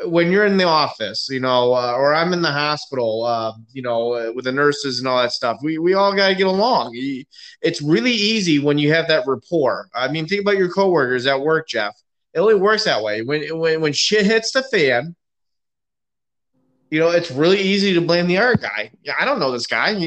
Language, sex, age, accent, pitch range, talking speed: English, male, 20-39, American, 130-175 Hz, 225 wpm